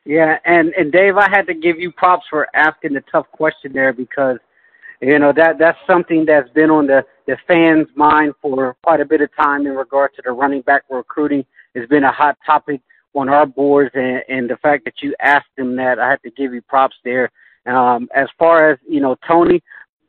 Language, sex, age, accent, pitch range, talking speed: English, male, 20-39, American, 130-150 Hz, 220 wpm